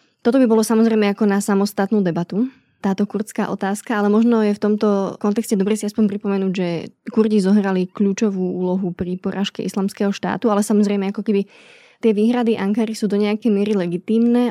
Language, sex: Slovak, female